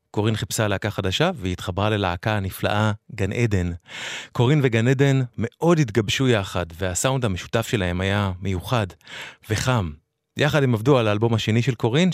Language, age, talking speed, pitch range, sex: English, 30-49, 150 wpm, 95-120 Hz, male